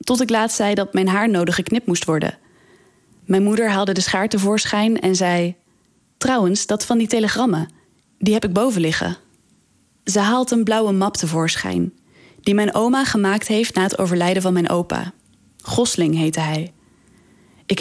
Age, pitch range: 20-39, 180-220 Hz